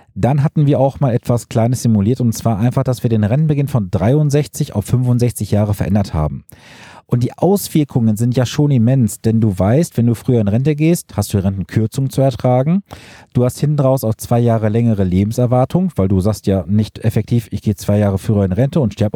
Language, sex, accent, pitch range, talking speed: German, male, German, 110-145 Hz, 205 wpm